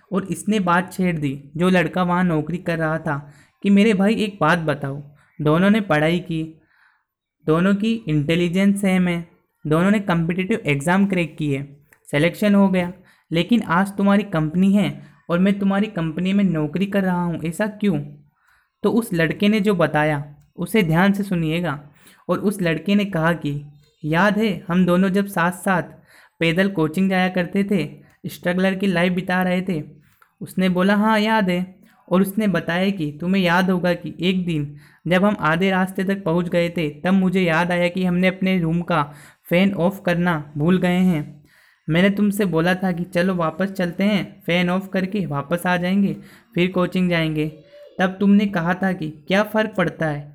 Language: Hindi